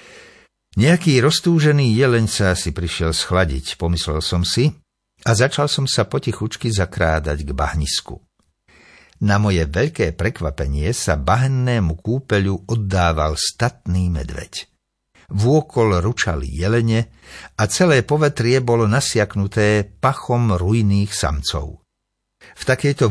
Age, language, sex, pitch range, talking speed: 60-79, Slovak, male, 85-120 Hz, 105 wpm